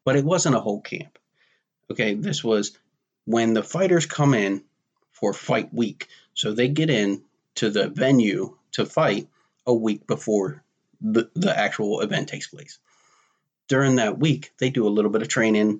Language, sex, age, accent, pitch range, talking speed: English, male, 30-49, American, 105-150 Hz, 170 wpm